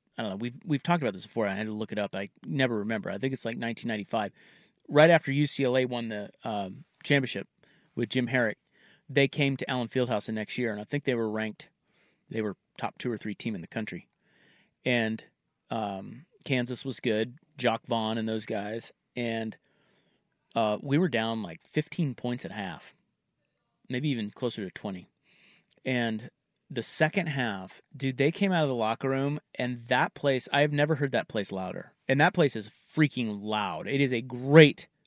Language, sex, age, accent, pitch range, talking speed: English, male, 30-49, American, 115-145 Hz, 195 wpm